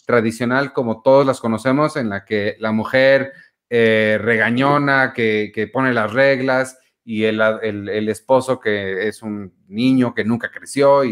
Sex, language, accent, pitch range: male, Spanish, Mexican, 110-135 Hz